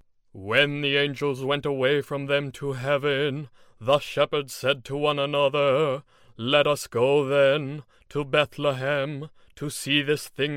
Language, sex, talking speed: English, male, 140 wpm